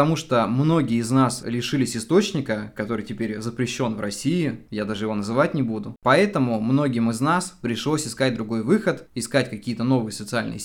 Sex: male